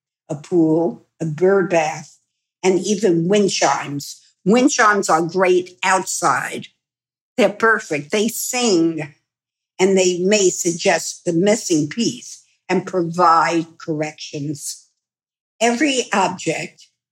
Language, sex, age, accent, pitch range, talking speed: English, female, 60-79, American, 165-210 Hz, 100 wpm